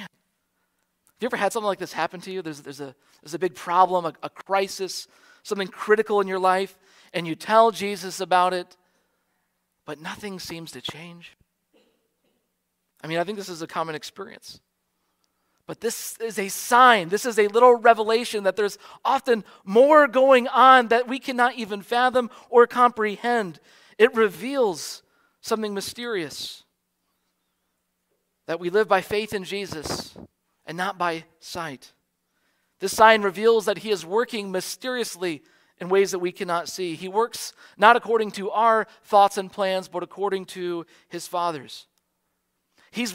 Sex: male